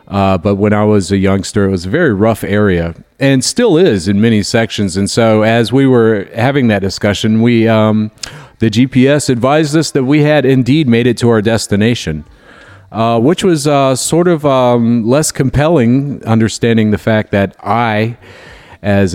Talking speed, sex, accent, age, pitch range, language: 180 wpm, male, American, 40-59, 100-125 Hz, English